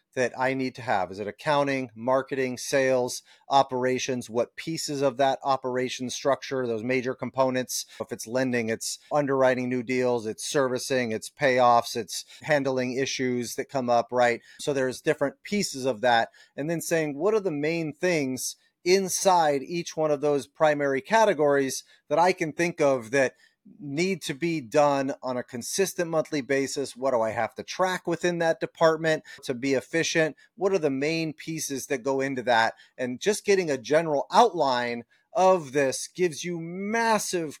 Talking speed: 170 wpm